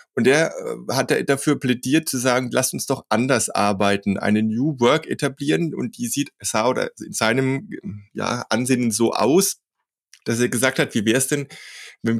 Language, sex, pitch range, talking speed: German, male, 105-135 Hz, 175 wpm